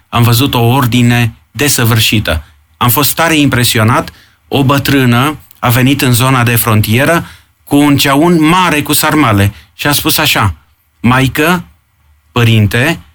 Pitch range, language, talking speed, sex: 110-150 Hz, Romanian, 130 wpm, male